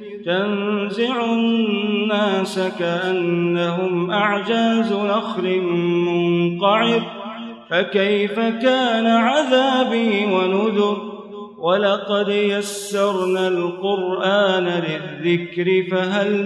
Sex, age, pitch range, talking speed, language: male, 30-49, 175-205 Hz, 55 wpm, Arabic